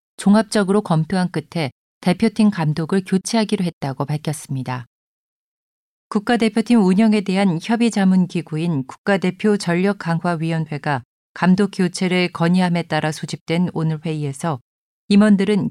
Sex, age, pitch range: female, 40-59, 160-205 Hz